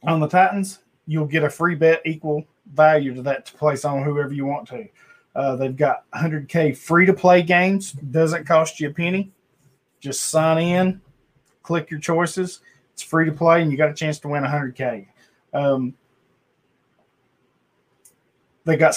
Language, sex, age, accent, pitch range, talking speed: English, male, 20-39, American, 140-165 Hz, 170 wpm